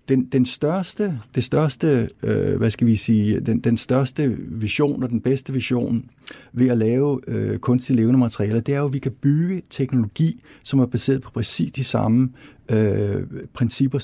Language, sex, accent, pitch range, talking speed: Danish, male, native, 115-135 Hz, 175 wpm